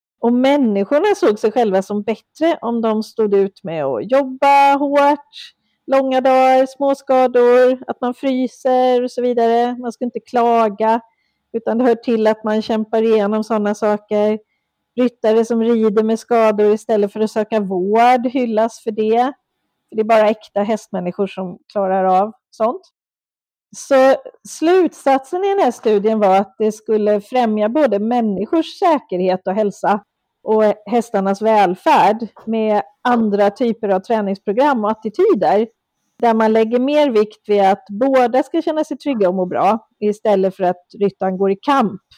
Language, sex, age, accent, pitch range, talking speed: Swedish, female, 40-59, native, 210-260 Hz, 155 wpm